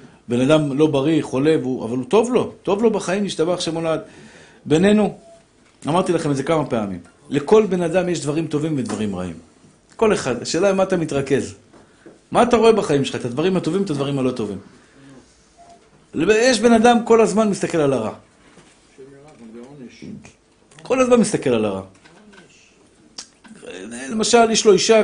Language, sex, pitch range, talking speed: Hebrew, male, 130-195 Hz, 155 wpm